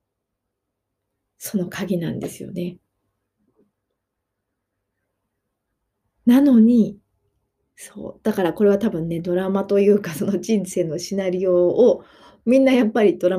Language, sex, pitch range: Japanese, female, 165-215 Hz